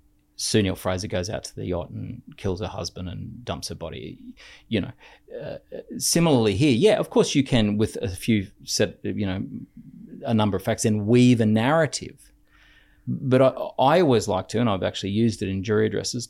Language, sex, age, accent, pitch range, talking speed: English, male, 30-49, Australian, 100-120 Hz, 190 wpm